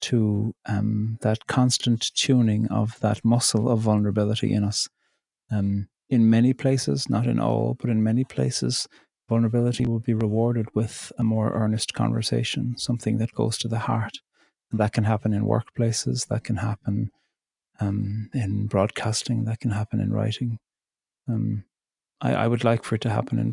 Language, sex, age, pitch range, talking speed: English, male, 30-49, 110-120 Hz, 165 wpm